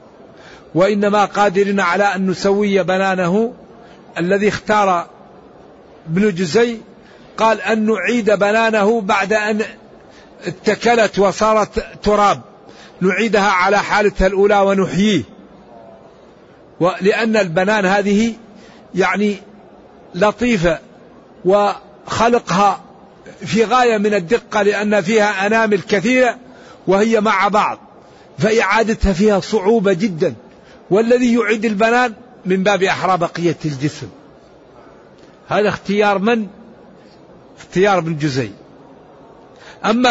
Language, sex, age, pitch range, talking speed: Arabic, male, 60-79, 190-225 Hz, 90 wpm